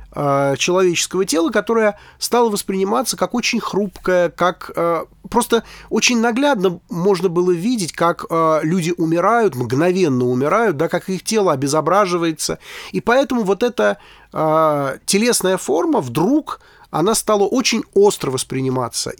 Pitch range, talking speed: 145-205 Hz, 115 wpm